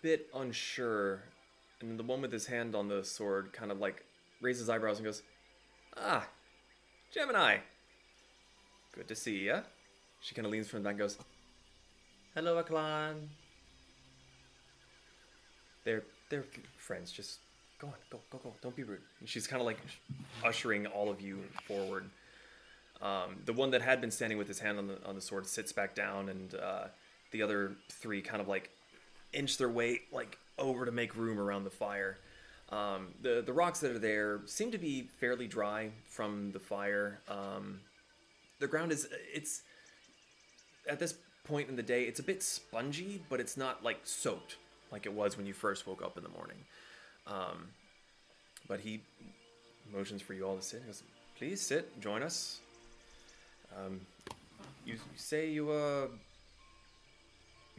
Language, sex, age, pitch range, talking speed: English, male, 20-39, 100-130 Hz, 165 wpm